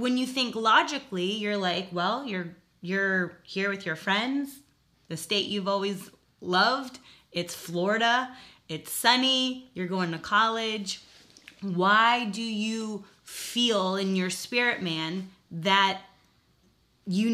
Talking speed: 125 wpm